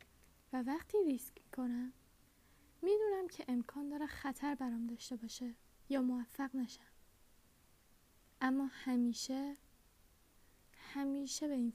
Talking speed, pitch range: 110 wpm, 240-275 Hz